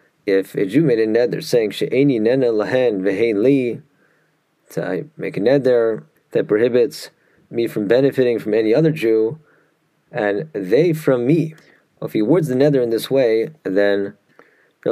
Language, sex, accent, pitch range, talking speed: English, male, American, 110-145 Hz, 140 wpm